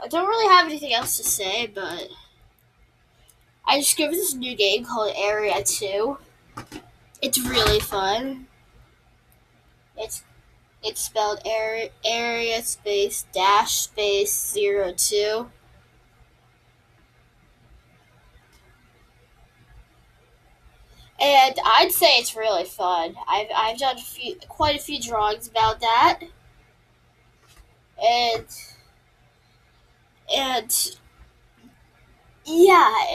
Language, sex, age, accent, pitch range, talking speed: English, female, 10-29, American, 210-295 Hz, 95 wpm